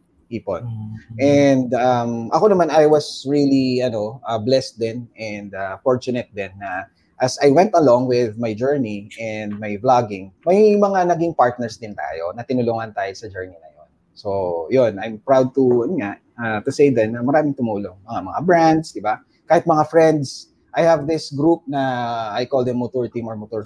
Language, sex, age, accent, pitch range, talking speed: English, male, 20-39, Filipino, 115-165 Hz, 185 wpm